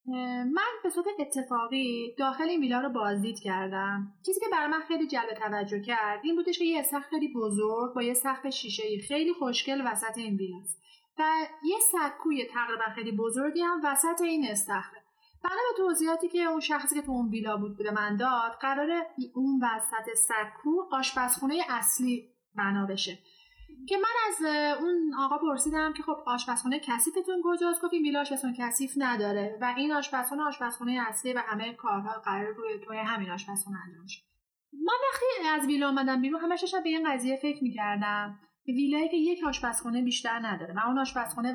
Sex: female